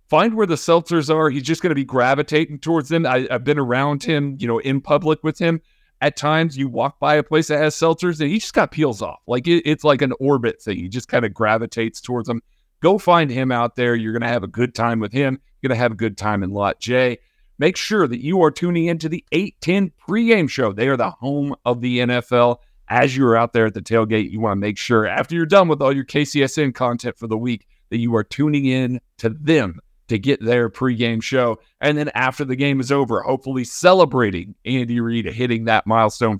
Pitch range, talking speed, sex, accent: 115-150 Hz, 245 wpm, male, American